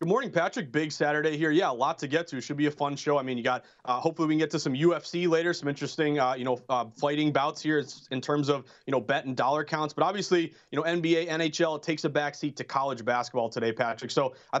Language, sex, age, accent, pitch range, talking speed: English, male, 30-49, American, 150-185 Hz, 265 wpm